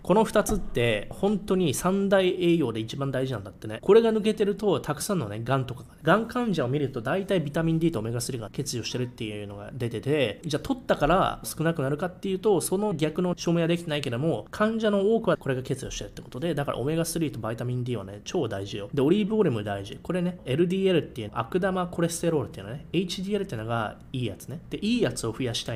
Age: 20-39